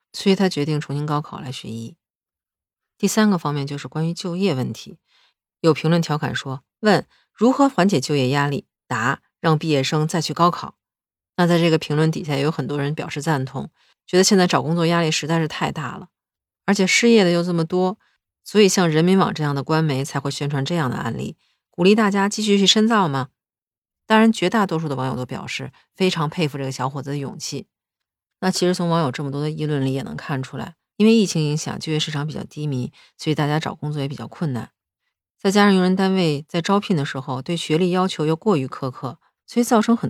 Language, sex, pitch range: Chinese, female, 140-190 Hz